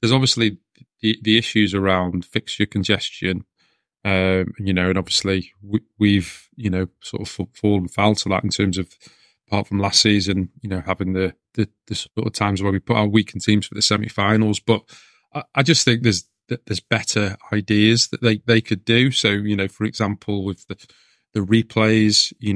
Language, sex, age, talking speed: English, male, 20-39, 195 wpm